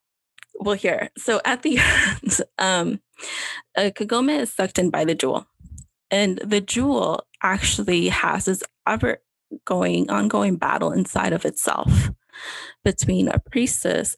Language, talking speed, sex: English, 130 wpm, female